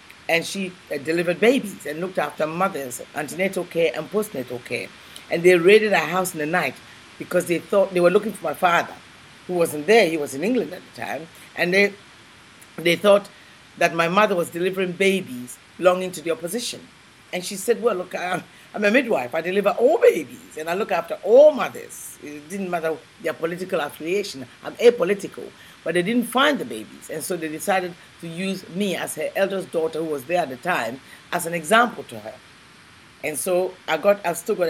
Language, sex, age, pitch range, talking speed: English, female, 60-79, 160-195 Hz, 200 wpm